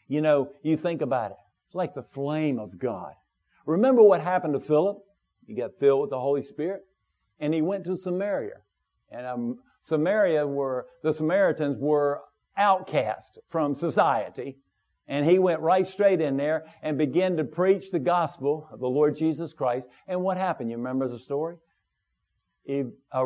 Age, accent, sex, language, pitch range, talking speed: 50-69, American, male, English, 155-210 Hz, 170 wpm